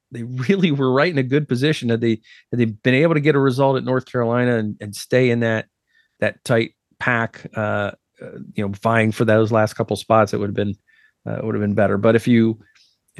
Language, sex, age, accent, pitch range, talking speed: English, male, 40-59, American, 110-130 Hz, 240 wpm